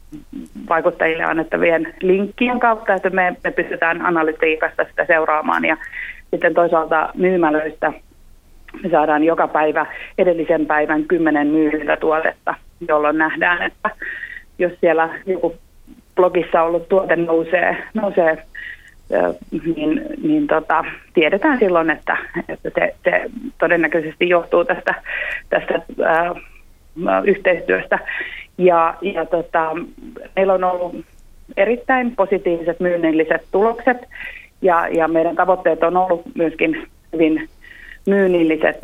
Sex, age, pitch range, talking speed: female, 30-49, 165-195 Hz, 105 wpm